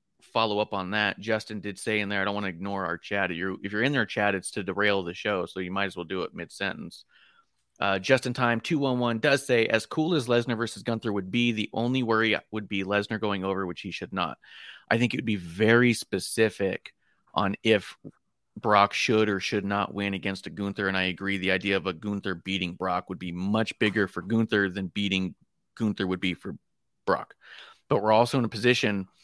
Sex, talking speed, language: male, 230 wpm, English